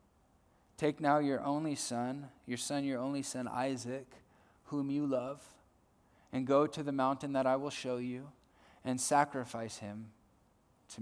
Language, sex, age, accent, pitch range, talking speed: English, male, 20-39, American, 110-135 Hz, 150 wpm